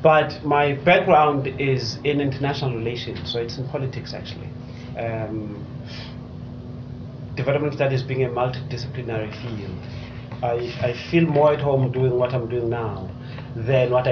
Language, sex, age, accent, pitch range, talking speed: English, male, 30-49, South African, 120-140 Hz, 135 wpm